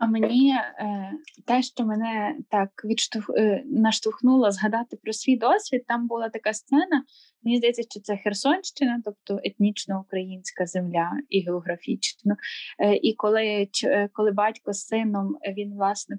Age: 10-29